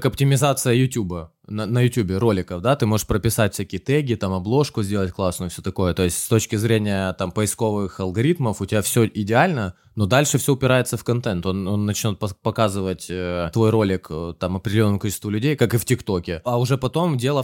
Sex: male